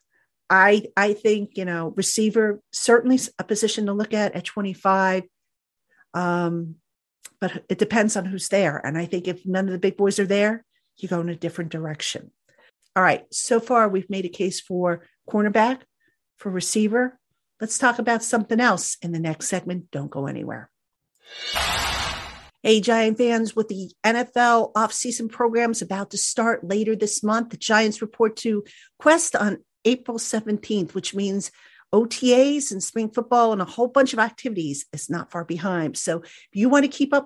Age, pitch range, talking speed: 50-69, 185-235 Hz, 170 wpm